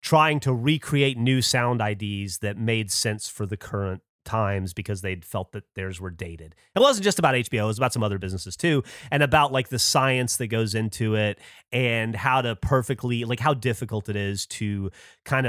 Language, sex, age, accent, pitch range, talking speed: English, male, 30-49, American, 100-130 Hz, 200 wpm